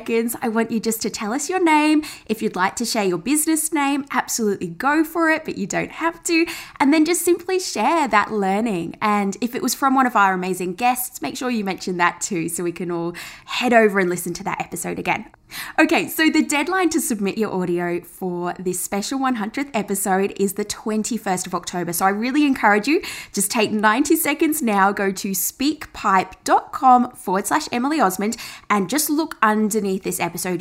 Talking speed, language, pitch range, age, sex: 200 wpm, English, 185-270 Hz, 20-39, female